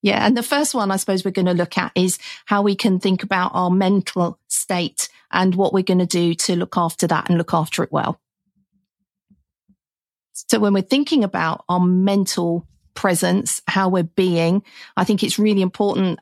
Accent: British